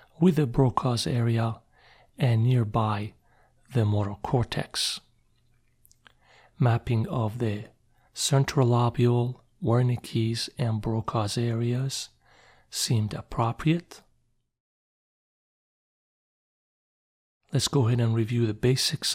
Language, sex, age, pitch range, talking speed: English, male, 40-59, 115-135 Hz, 85 wpm